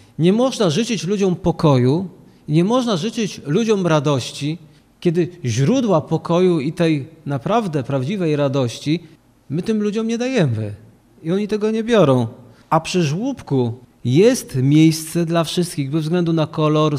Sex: male